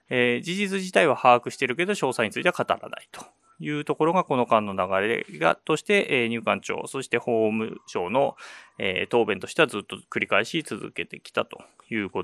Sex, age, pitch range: male, 20-39, 110-150 Hz